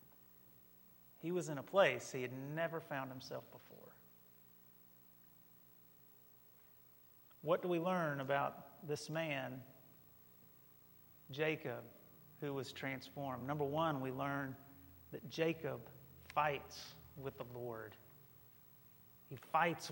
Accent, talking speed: American, 100 wpm